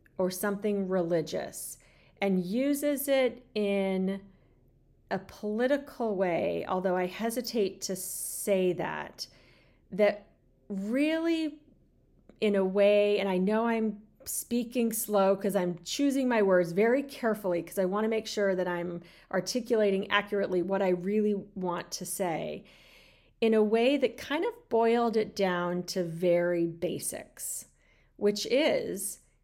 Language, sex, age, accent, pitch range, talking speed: English, female, 40-59, American, 185-235 Hz, 130 wpm